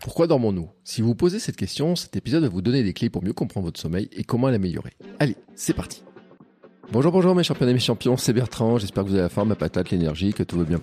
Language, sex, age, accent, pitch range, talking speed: French, male, 40-59, French, 85-115 Hz, 265 wpm